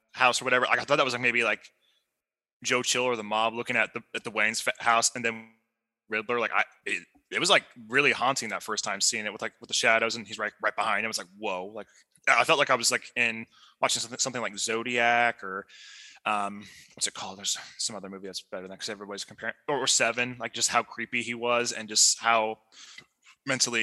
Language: English